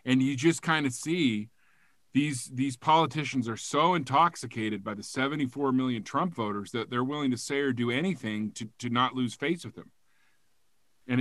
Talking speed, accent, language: 180 wpm, American, English